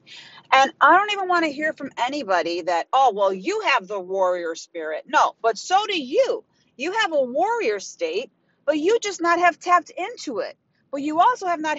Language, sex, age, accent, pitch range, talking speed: English, female, 40-59, American, 205-315 Hz, 205 wpm